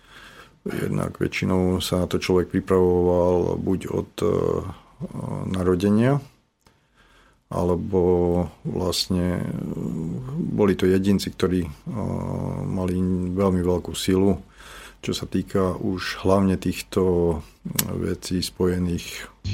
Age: 50-69